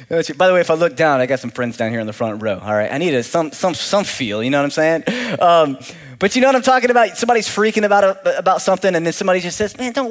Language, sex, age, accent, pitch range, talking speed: English, male, 20-39, American, 140-205 Hz, 305 wpm